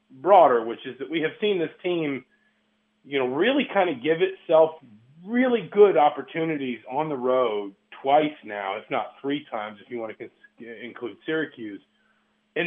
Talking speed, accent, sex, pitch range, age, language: 170 wpm, American, male, 120-170 Hz, 40-59, English